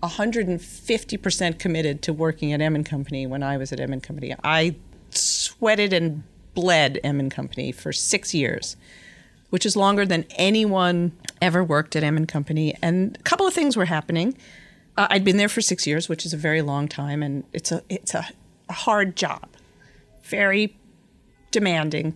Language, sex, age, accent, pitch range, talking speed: English, female, 40-59, American, 155-195 Hz, 180 wpm